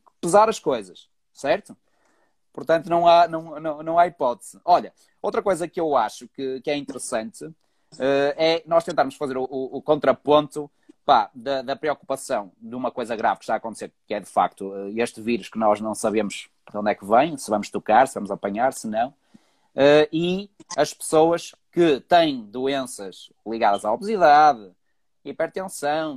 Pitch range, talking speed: 135-165 Hz, 165 wpm